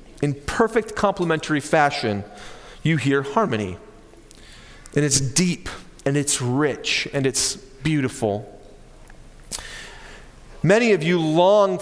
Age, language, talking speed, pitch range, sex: 30-49, English, 100 wpm, 150-215 Hz, male